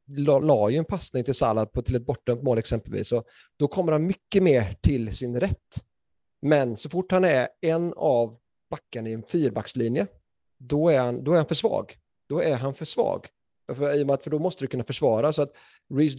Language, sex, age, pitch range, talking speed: Swedish, male, 30-49, 120-145 Hz, 200 wpm